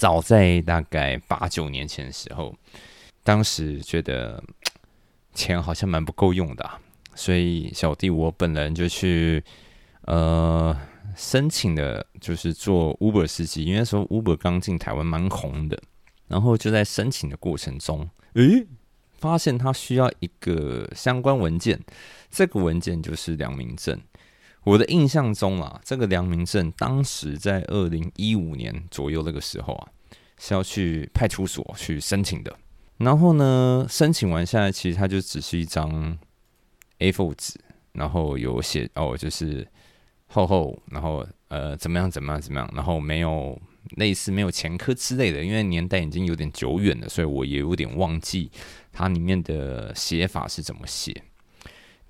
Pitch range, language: 80-100 Hz, Chinese